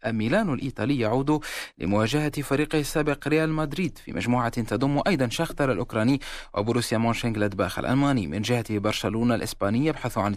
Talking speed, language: 135 wpm, Arabic